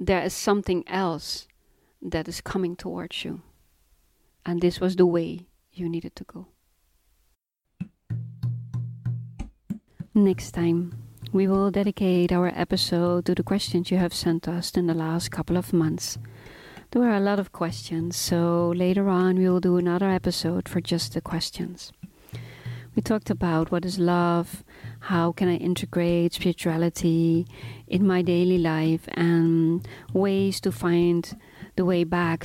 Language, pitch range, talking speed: English, 160-180 Hz, 145 wpm